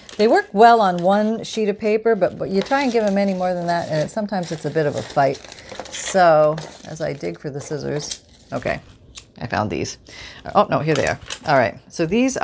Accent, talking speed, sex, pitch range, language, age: American, 225 wpm, female, 150-195 Hz, English, 40-59